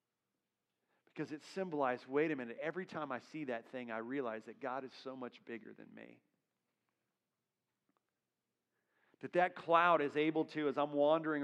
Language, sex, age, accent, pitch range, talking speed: English, male, 40-59, American, 145-180 Hz, 165 wpm